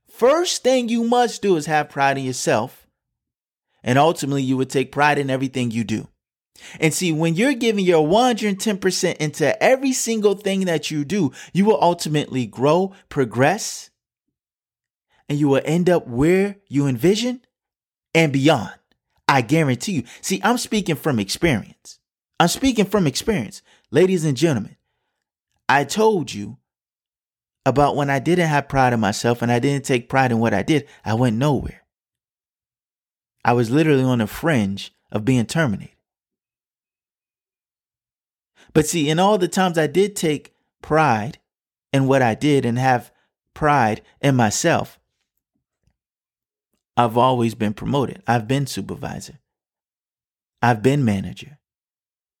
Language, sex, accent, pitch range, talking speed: English, male, American, 130-180 Hz, 145 wpm